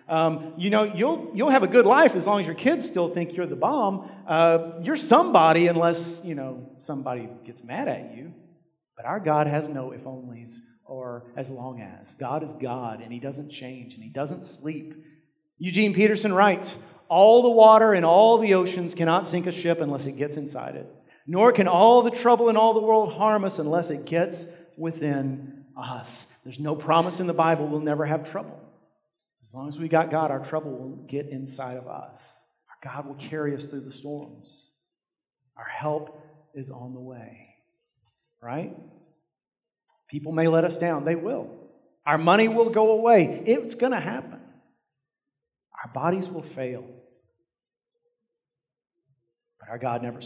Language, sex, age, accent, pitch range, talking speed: English, male, 40-59, American, 135-180 Hz, 180 wpm